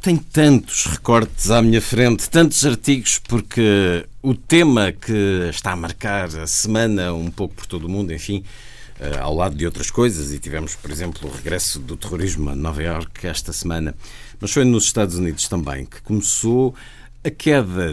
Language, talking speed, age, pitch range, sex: Portuguese, 175 wpm, 50-69, 85-120 Hz, male